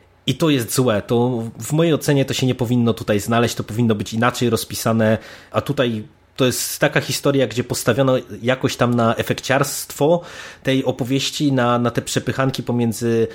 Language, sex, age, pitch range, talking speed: Polish, male, 20-39, 110-135 Hz, 170 wpm